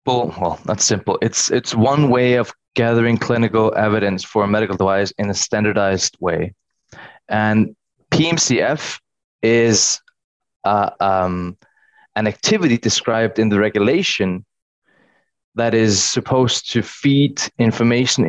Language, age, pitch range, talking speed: English, 20-39, 105-125 Hz, 120 wpm